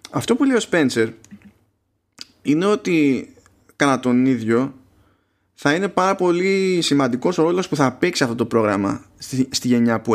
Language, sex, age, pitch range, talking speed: Greek, male, 20-39, 105-135 Hz, 155 wpm